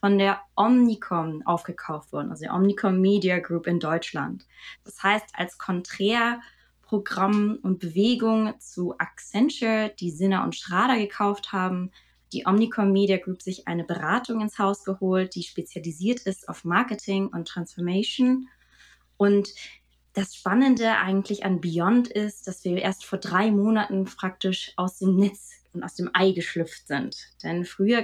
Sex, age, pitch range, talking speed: female, 20-39, 175-205 Hz, 145 wpm